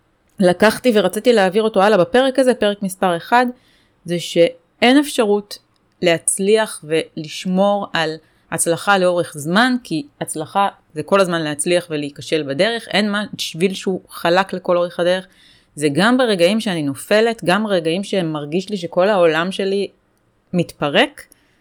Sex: female